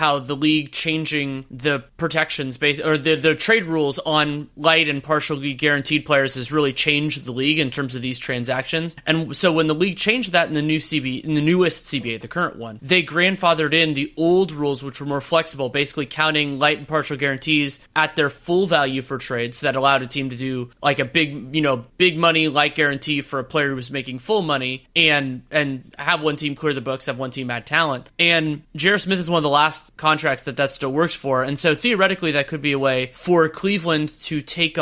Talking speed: 225 wpm